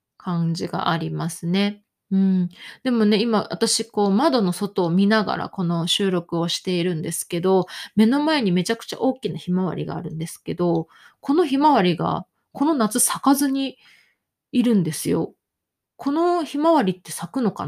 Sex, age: female, 20-39